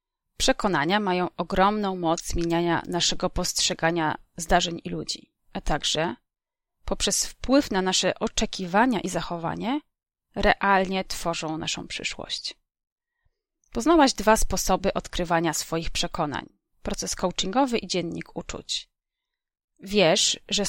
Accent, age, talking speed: native, 30-49, 105 wpm